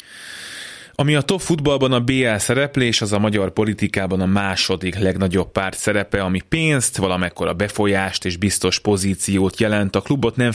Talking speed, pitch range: 150 wpm, 95-115 Hz